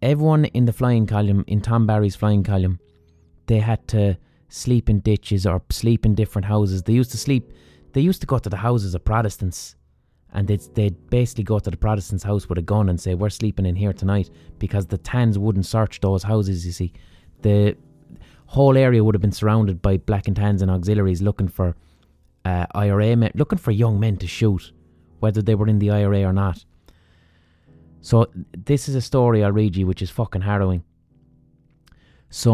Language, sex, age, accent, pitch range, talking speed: English, male, 20-39, Irish, 90-110 Hz, 195 wpm